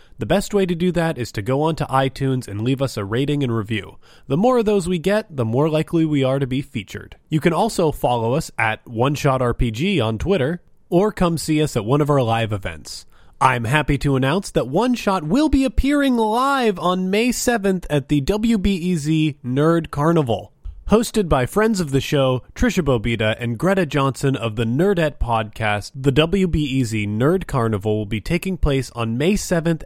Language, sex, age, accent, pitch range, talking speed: English, male, 20-39, American, 120-180 Hz, 190 wpm